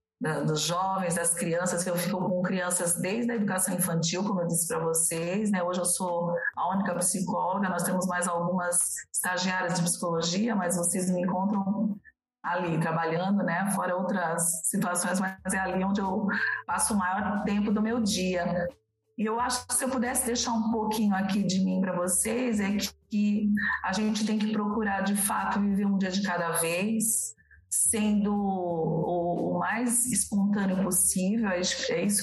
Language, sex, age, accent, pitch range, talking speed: Portuguese, female, 40-59, Brazilian, 175-205 Hz, 170 wpm